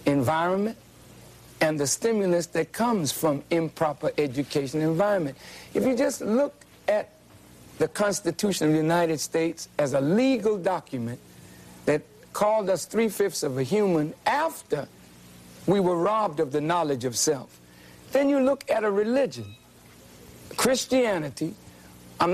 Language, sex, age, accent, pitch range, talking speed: English, male, 60-79, American, 155-245 Hz, 130 wpm